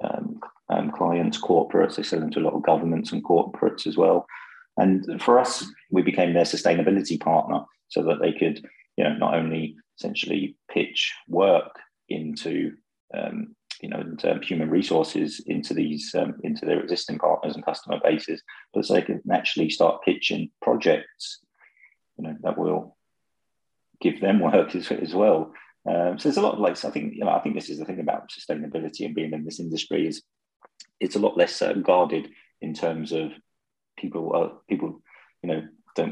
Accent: British